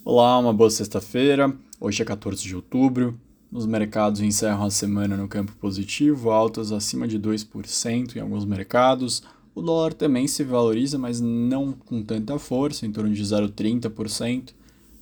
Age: 20-39